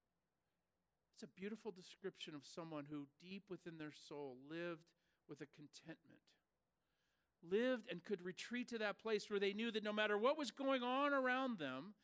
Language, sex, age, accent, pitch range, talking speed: English, male, 50-69, American, 150-215 Hz, 170 wpm